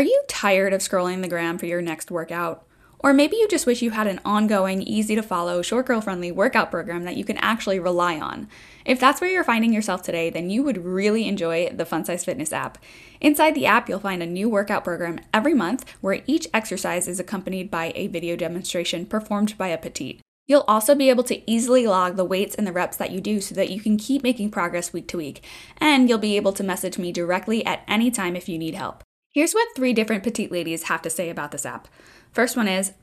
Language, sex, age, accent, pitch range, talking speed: English, female, 10-29, American, 180-245 Hz, 235 wpm